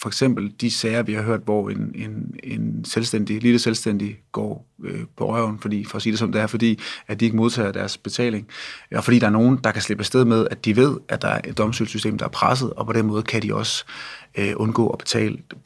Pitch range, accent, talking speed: 110-120 Hz, native, 255 wpm